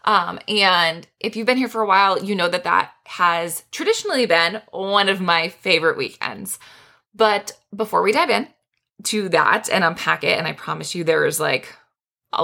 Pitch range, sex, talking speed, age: 175-225 Hz, female, 190 wpm, 20-39